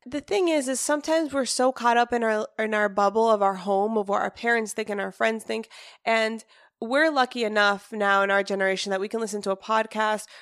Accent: American